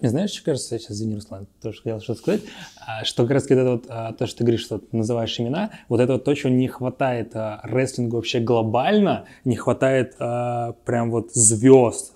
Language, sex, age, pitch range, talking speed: Russian, male, 20-39, 115-130 Hz, 195 wpm